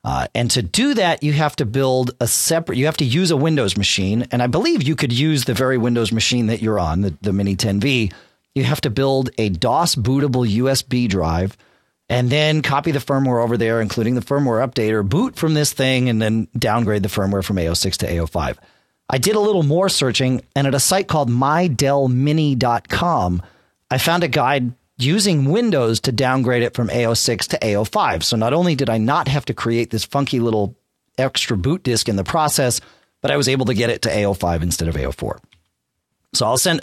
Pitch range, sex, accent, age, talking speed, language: 110-145 Hz, male, American, 40-59, 205 wpm, English